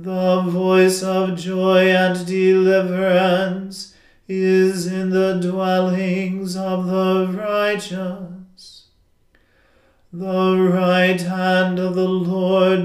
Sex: male